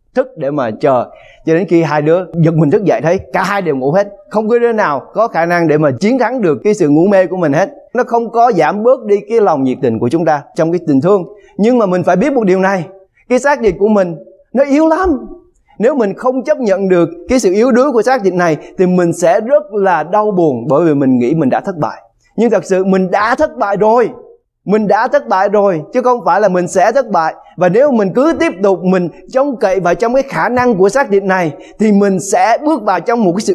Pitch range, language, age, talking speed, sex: 185-265 Hz, English, 20-39, 265 wpm, male